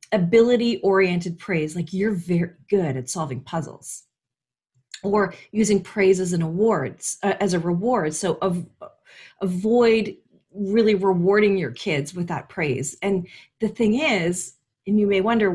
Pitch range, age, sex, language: 170-230 Hz, 40-59, female, English